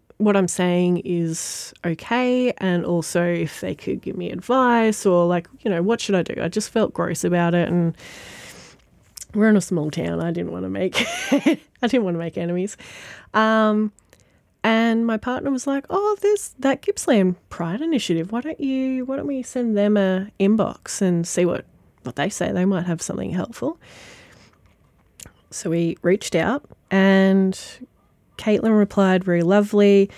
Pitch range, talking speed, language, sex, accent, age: 175-215 Hz, 170 wpm, English, female, Australian, 20-39